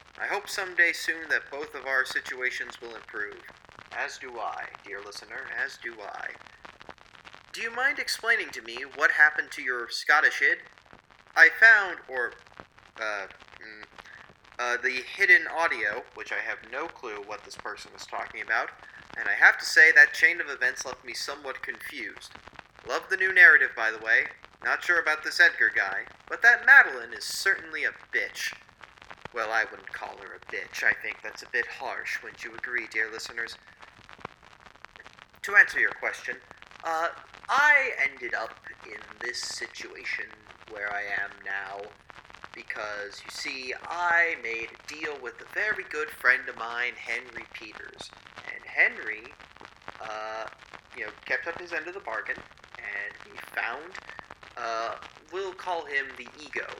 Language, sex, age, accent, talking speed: English, male, 30-49, American, 165 wpm